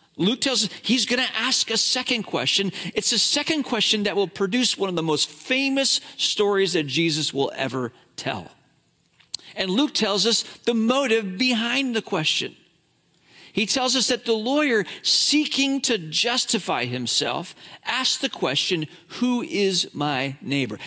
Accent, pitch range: American, 175-245 Hz